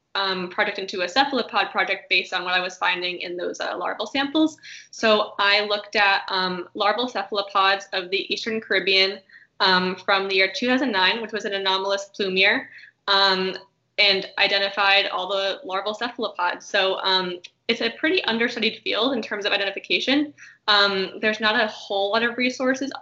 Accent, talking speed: American, 165 wpm